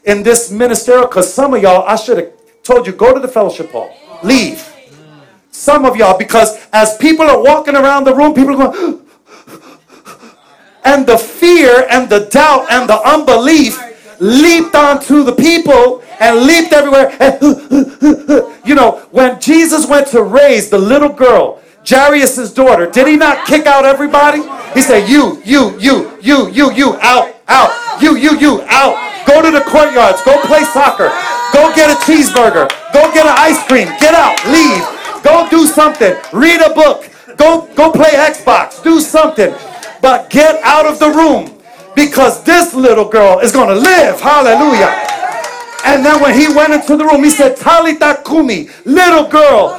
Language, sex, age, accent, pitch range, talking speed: English, male, 40-59, American, 245-310 Hz, 170 wpm